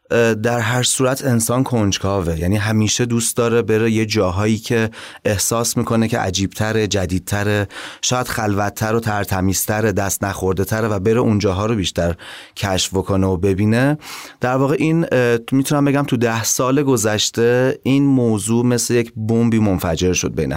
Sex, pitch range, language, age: male, 95-115 Hz, Persian, 30-49